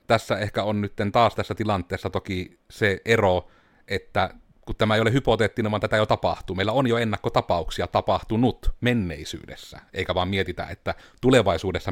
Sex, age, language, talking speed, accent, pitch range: male, 30-49, Finnish, 155 wpm, native, 90-110 Hz